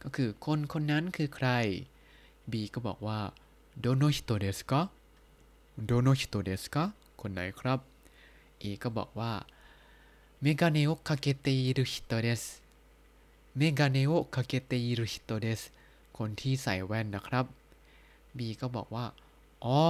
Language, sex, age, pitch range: Thai, male, 20-39, 110-145 Hz